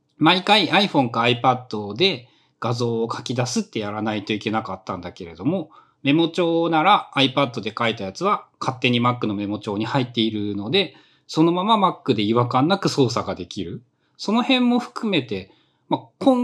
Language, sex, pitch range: Japanese, male, 115-190 Hz